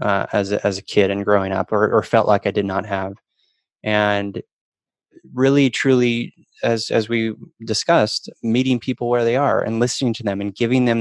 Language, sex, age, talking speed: English, male, 20-39, 195 wpm